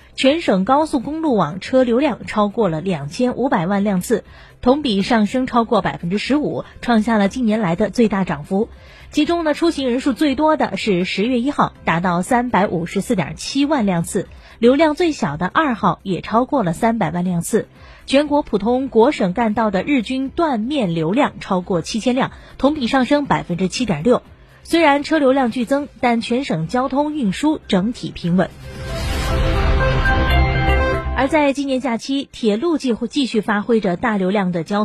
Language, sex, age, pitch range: Chinese, female, 30-49, 195-265 Hz